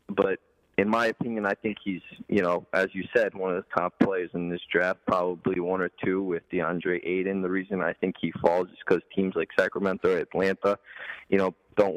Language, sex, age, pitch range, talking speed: English, male, 20-39, 90-100 Hz, 215 wpm